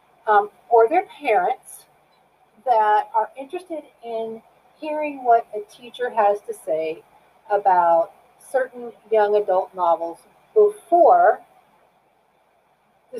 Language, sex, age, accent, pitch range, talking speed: English, female, 40-59, American, 205-345 Hz, 100 wpm